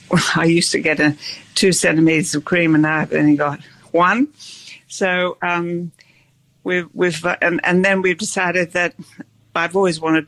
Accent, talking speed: British, 150 wpm